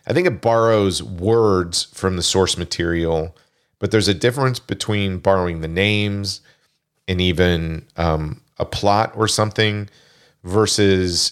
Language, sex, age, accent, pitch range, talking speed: English, male, 40-59, American, 90-110 Hz, 135 wpm